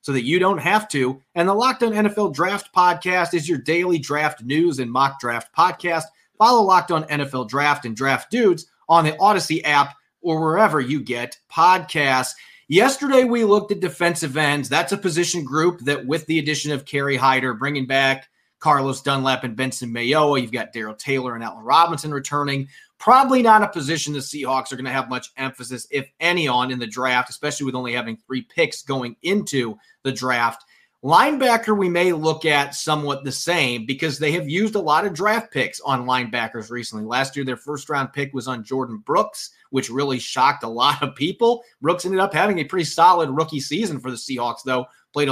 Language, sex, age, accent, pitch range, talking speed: English, male, 30-49, American, 130-170 Hz, 200 wpm